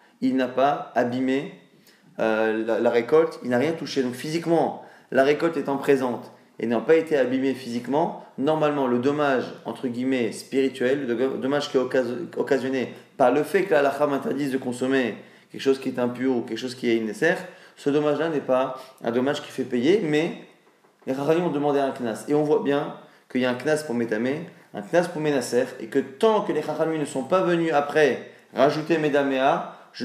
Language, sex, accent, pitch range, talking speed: French, male, French, 125-150 Hz, 200 wpm